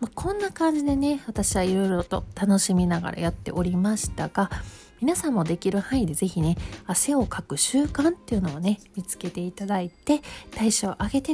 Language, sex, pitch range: Japanese, female, 180-260 Hz